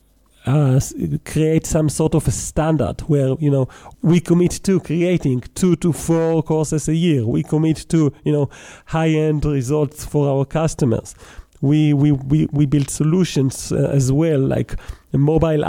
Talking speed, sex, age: 160 wpm, male, 40-59